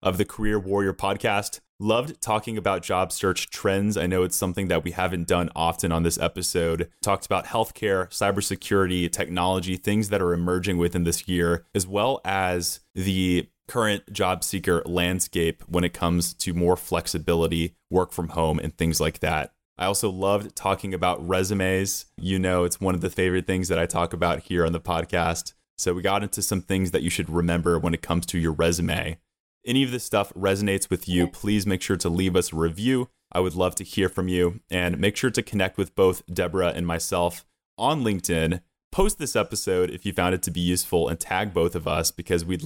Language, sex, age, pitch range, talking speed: English, male, 20-39, 85-100 Hz, 205 wpm